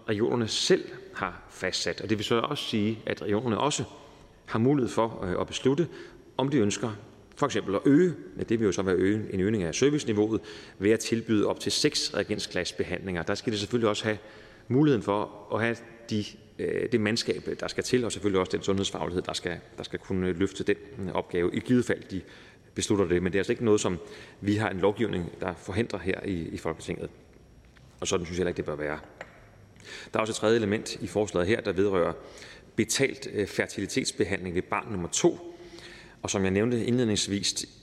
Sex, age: male, 30-49